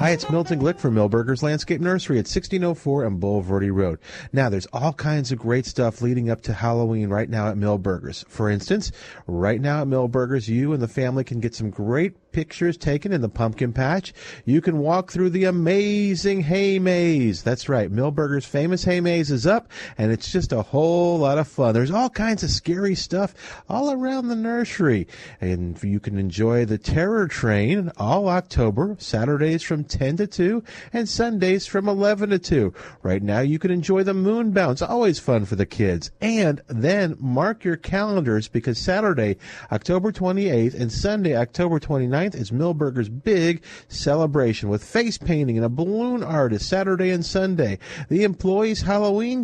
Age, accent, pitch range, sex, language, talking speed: 40-59, American, 120-185 Hz, male, English, 175 wpm